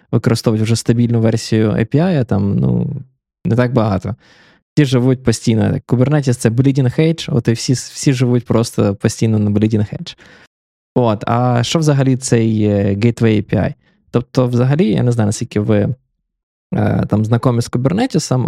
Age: 20-39